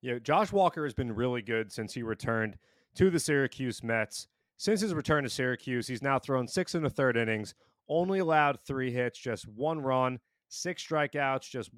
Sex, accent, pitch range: male, American, 120-150 Hz